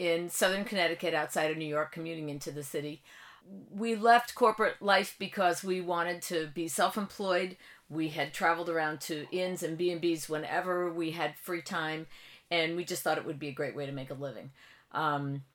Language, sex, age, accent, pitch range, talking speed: English, female, 50-69, American, 160-195 Hz, 190 wpm